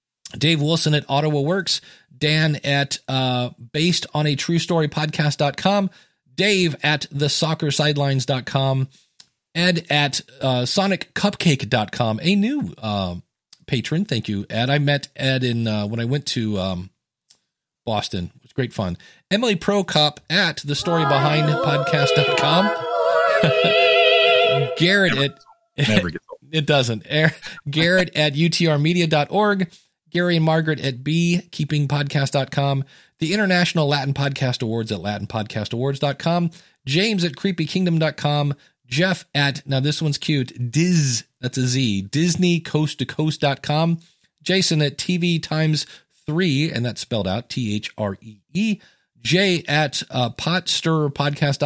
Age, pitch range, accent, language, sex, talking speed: 40-59, 135-170 Hz, American, English, male, 125 wpm